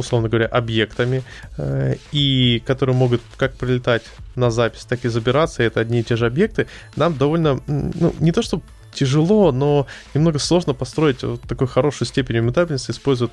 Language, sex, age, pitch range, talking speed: Russian, male, 20-39, 115-135 Hz, 170 wpm